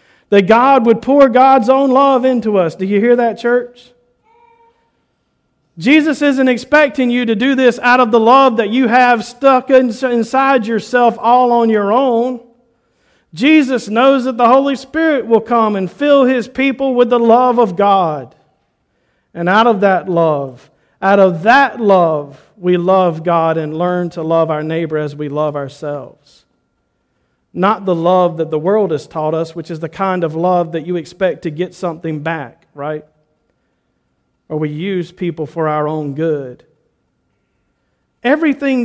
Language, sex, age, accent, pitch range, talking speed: English, male, 50-69, American, 165-245 Hz, 165 wpm